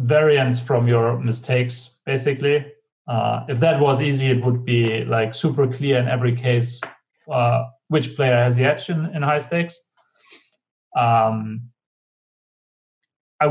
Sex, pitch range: male, 120-150 Hz